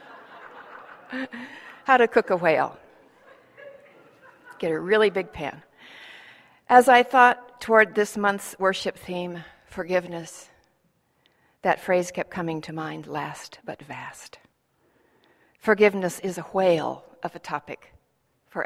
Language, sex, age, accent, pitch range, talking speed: English, female, 60-79, American, 165-210 Hz, 115 wpm